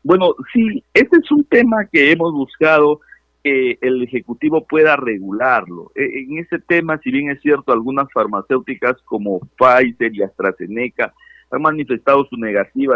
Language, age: Spanish, 50-69